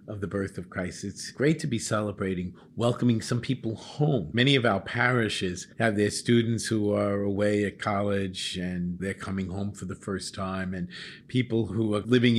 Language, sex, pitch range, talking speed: English, male, 95-125 Hz, 190 wpm